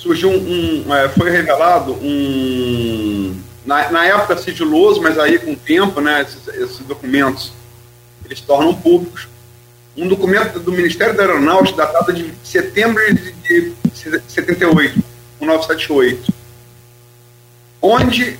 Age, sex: 40-59, male